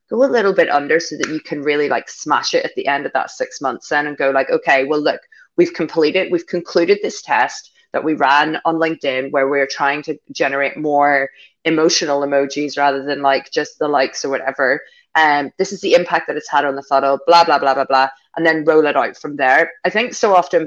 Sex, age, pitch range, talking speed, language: female, 20-39, 145-180 Hz, 235 wpm, English